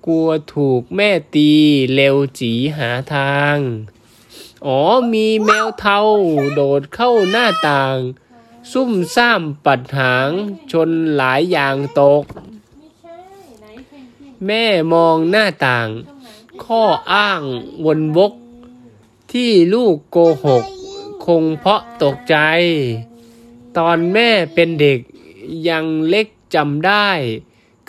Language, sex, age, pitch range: Thai, male, 20-39, 135-195 Hz